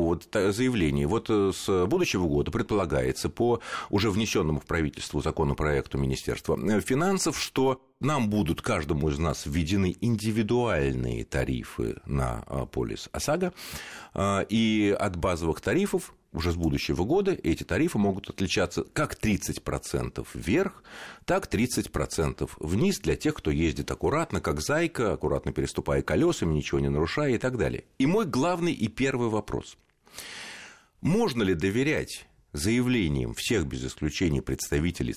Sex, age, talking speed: male, 40-59, 125 wpm